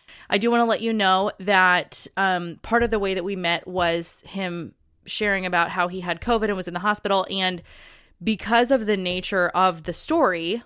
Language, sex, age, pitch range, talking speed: English, female, 20-39, 175-205 Hz, 210 wpm